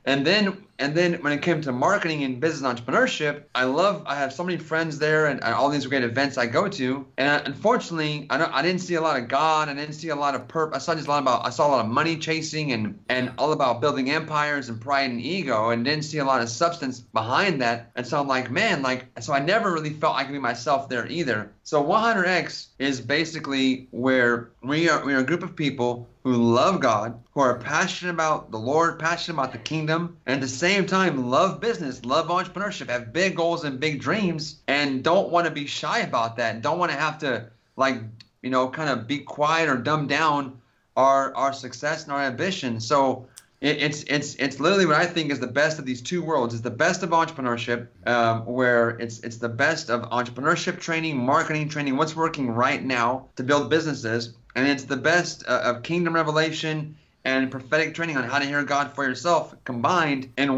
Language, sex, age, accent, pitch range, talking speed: English, male, 30-49, American, 125-160 Hz, 220 wpm